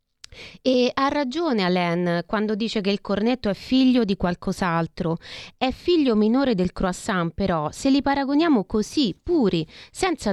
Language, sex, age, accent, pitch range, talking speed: Italian, female, 30-49, native, 185-265 Hz, 145 wpm